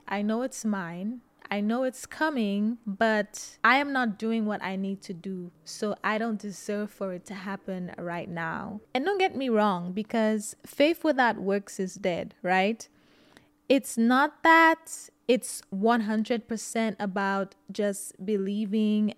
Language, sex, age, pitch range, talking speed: English, female, 20-39, 195-240 Hz, 150 wpm